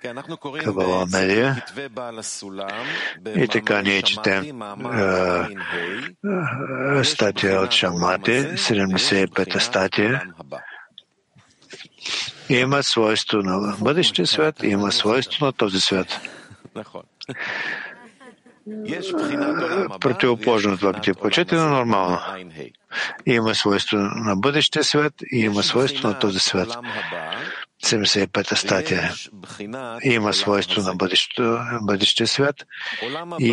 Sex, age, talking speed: male, 60-79, 85 wpm